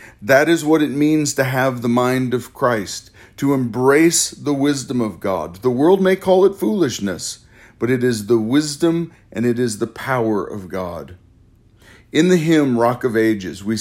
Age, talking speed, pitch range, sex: 40-59, 180 wpm, 105-135 Hz, male